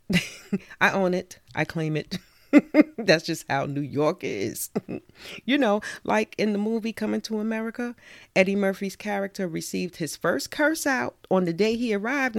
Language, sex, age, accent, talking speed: English, female, 40-59, American, 165 wpm